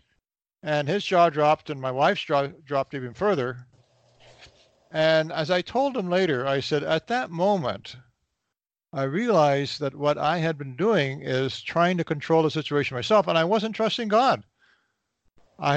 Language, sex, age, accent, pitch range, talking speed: English, male, 60-79, American, 135-175 Hz, 165 wpm